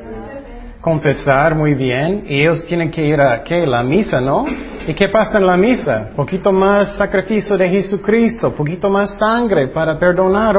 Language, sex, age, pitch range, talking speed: Spanish, male, 30-49, 150-205 Hz, 165 wpm